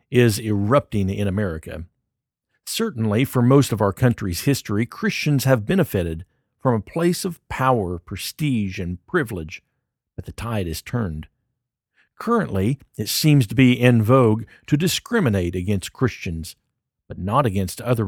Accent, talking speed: American, 140 wpm